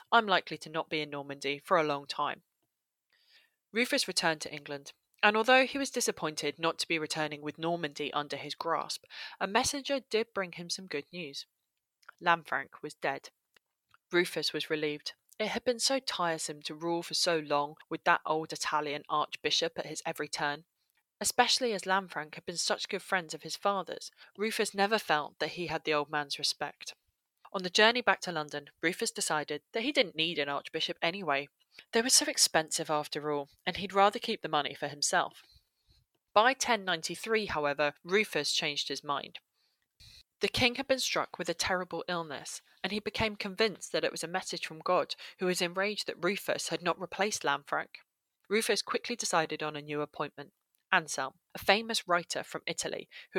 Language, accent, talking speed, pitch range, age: English, British, 180 wpm, 150-205 Hz, 20-39